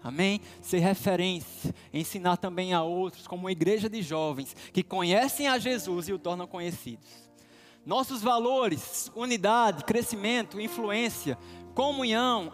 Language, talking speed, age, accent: Portuguese, 125 wpm, 20-39, Brazilian